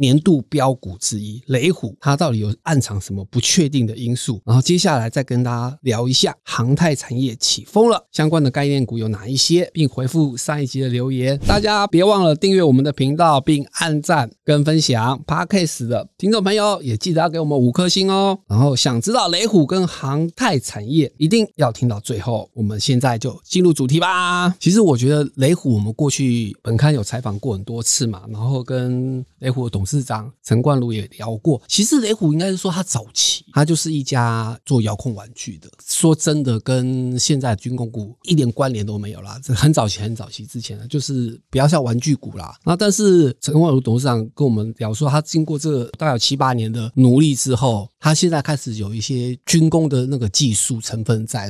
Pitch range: 115-155 Hz